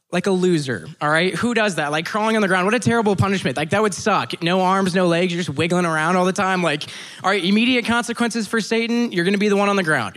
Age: 20-39